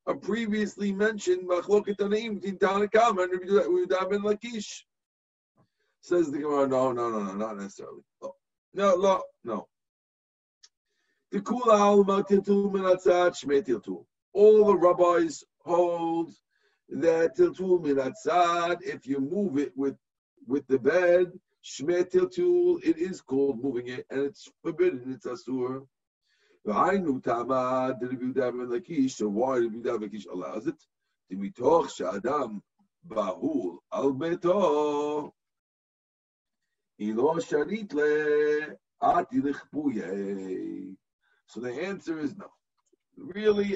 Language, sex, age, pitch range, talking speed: English, male, 50-69, 135-205 Hz, 70 wpm